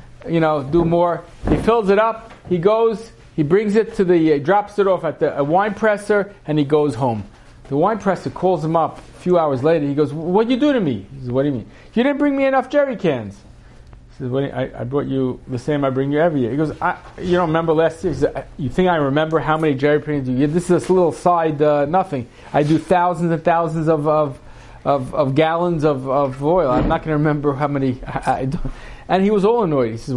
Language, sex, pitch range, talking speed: English, male, 135-180 Hz, 260 wpm